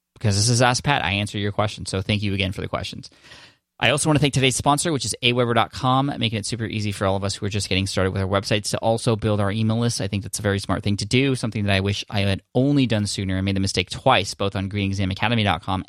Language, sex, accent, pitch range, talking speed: English, male, American, 100-120 Hz, 280 wpm